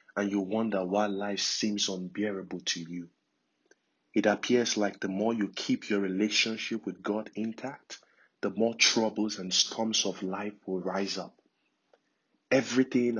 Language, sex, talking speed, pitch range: English, male, 145 wpm, 100-120 Hz